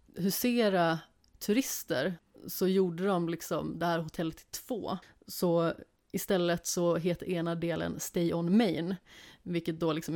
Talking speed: 135 wpm